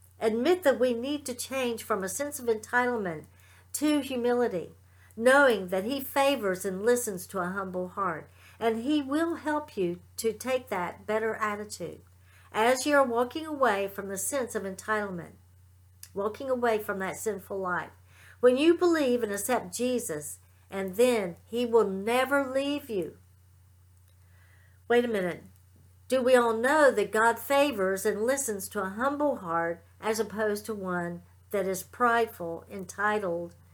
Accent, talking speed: American, 155 wpm